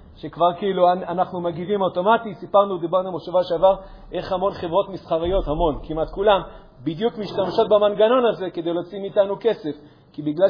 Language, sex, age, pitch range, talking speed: Hebrew, male, 40-59, 165-215 Hz, 150 wpm